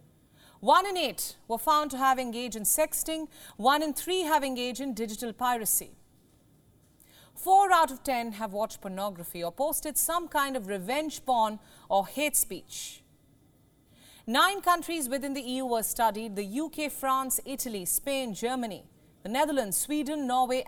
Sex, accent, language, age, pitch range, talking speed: female, Indian, English, 40-59, 225-300 Hz, 150 wpm